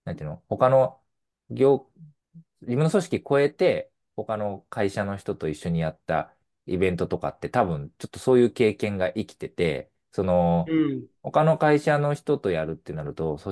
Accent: native